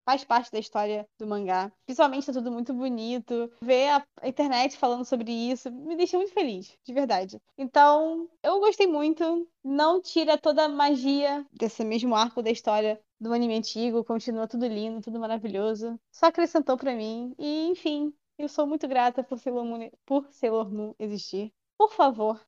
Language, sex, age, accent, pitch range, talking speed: Portuguese, female, 10-29, Brazilian, 215-285 Hz, 175 wpm